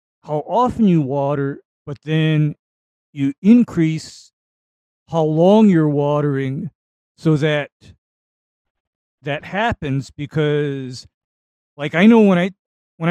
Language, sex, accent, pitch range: English, male, American, 140-180 Hz